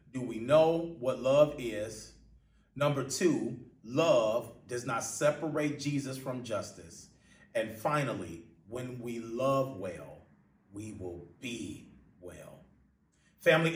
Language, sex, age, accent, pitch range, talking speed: English, male, 30-49, American, 125-185 Hz, 115 wpm